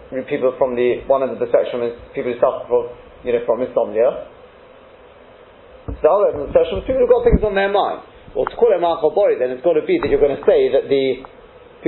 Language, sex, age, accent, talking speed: English, male, 30-49, British, 260 wpm